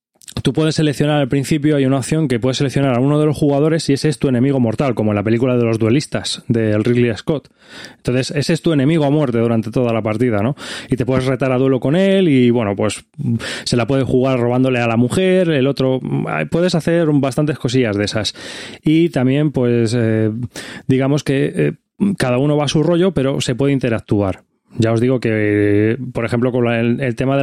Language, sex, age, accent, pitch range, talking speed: Spanish, male, 20-39, Spanish, 120-150 Hz, 215 wpm